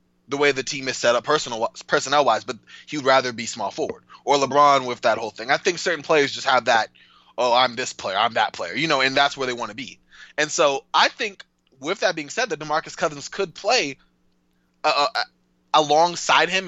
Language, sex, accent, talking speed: English, male, American, 225 wpm